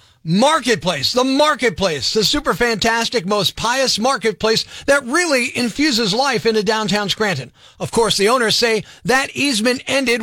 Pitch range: 210-280 Hz